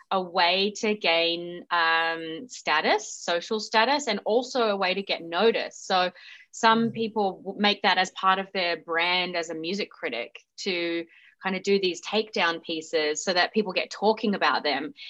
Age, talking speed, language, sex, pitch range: 20-39, 170 wpm, English, female, 170-210 Hz